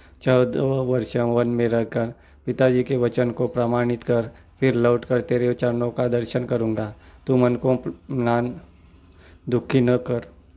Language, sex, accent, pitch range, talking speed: Hindi, male, native, 115-125 Hz, 140 wpm